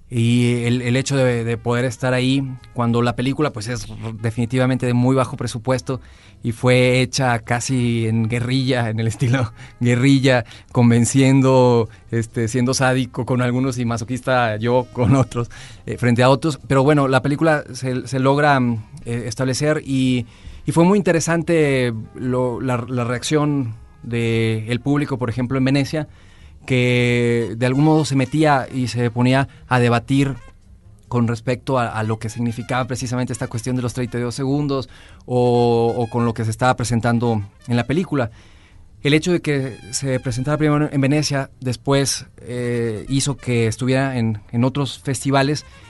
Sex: male